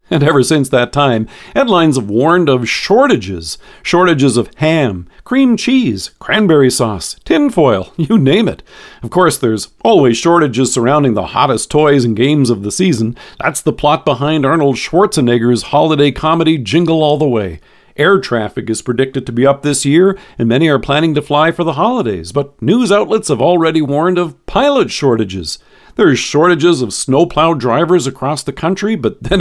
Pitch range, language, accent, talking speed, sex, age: 125-165 Hz, English, American, 170 wpm, male, 50-69